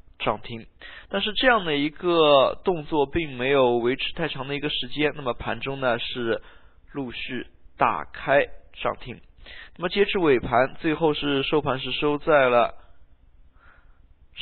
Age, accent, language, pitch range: 20-39, native, Chinese, 120-165 Hz